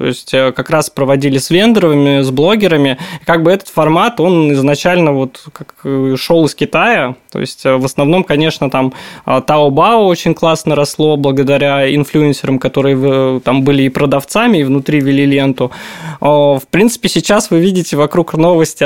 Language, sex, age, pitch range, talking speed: Russian, male, 20-39, 140-170 Hz, 155 wpm